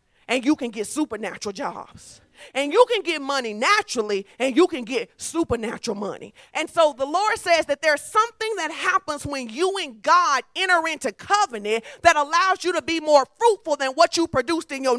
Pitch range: 260-360 Hz